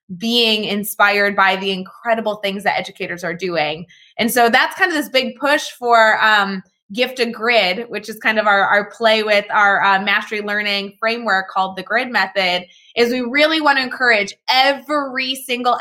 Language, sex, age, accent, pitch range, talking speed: English, female, 20-39, American, 205-245 Hz, 180 wpm